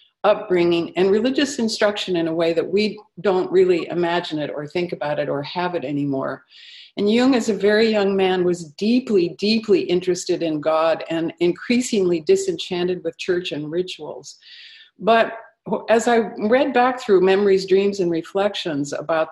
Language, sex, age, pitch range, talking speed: English, female, 50-69, 175-230 Hz, 160 wpm